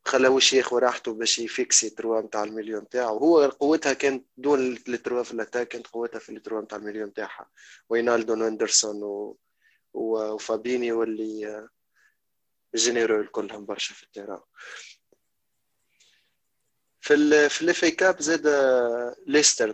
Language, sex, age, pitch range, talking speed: Arabic, male, 20-39, 115-135 Hz, 115 wpm